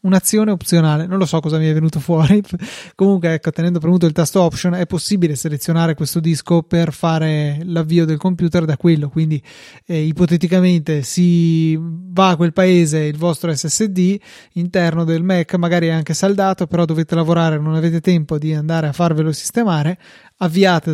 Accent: native